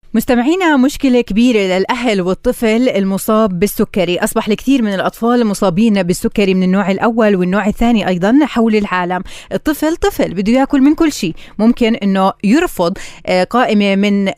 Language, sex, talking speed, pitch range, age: Arabic, female, 140 wpm, 190-230 Hz, 20-39